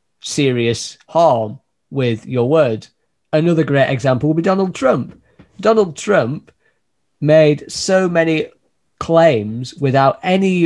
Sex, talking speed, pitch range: male, 115 wpm, 130-165 Hz